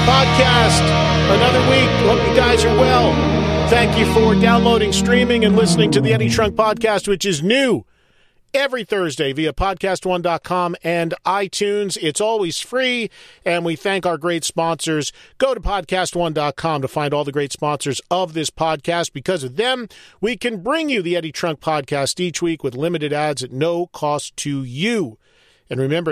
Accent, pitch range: American, 150-195 Hz